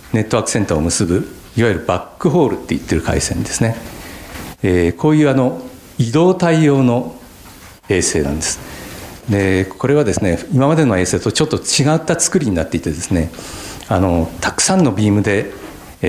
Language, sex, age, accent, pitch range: Japanese, male, 60-79, native, 90-135 Hz